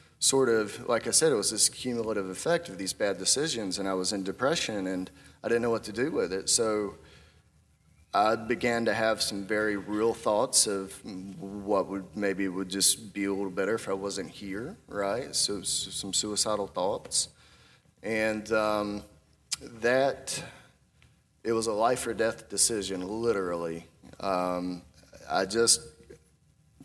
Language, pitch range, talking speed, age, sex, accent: English, 95-110 Hz, 155 wpm, 30-49, male, American